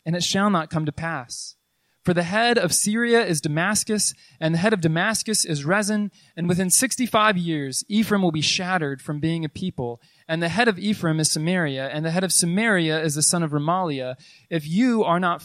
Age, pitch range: 20-39, 150-190 Hz